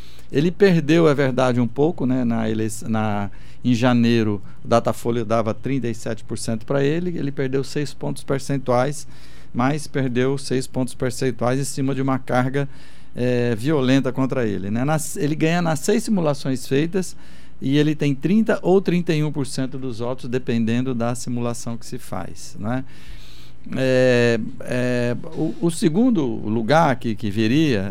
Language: Portuguese